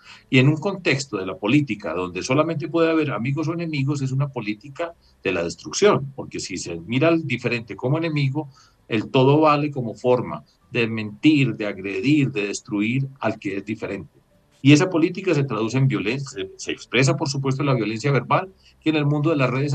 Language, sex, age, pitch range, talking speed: Spanish, male, 50-69, 120-155 Hz, 200 wpm